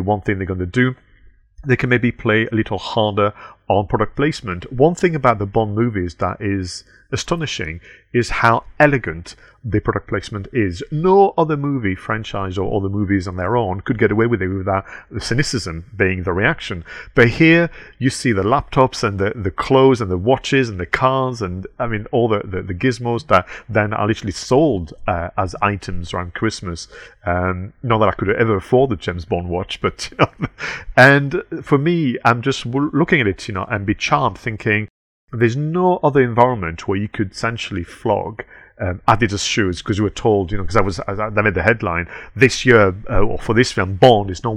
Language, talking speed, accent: English, 200 wpm, British